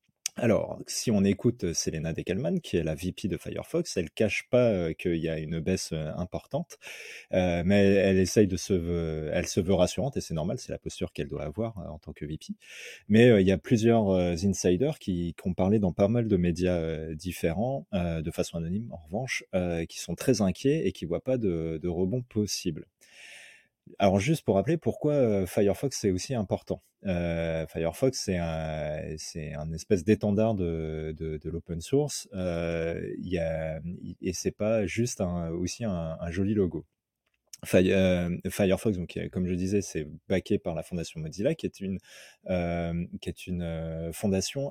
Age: 30-49